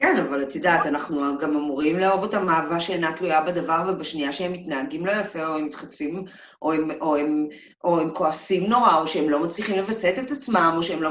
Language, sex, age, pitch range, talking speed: Hebrew, female, 40-59, 170-255 Hz, 220 wpm